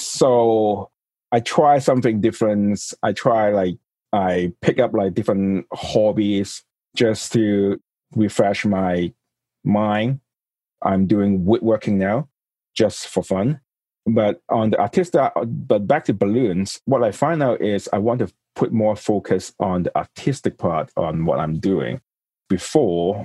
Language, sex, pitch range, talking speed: English, male, 95-115 Hz, 140 wpm